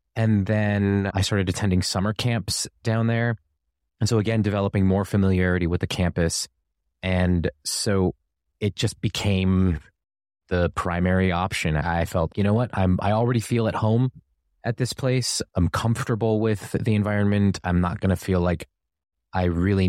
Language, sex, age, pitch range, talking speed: English, male, 20-39, 90-110 Hz, 160 wpm